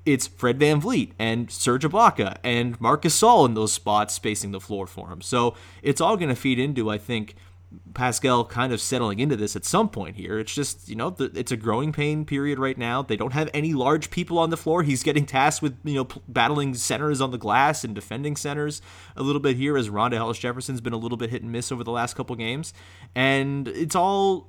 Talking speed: 235 wpm